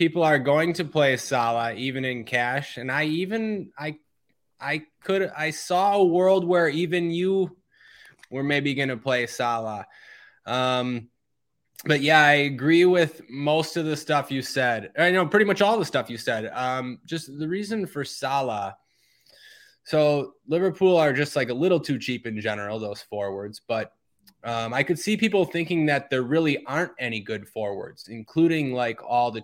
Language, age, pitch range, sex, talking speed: English, 20-39, 120-155 Hz, male, 175 wpm